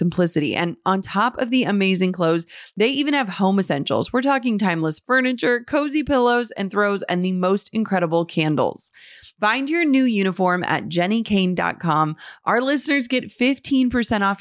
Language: English